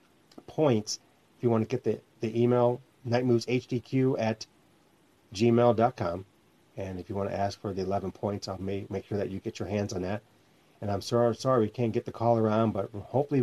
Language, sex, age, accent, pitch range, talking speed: English, male, 40-59, American, 100-120 Hz, 210 wpm